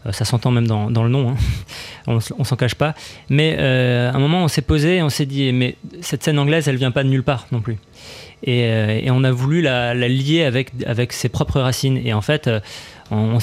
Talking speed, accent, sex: 235 wpm, French, male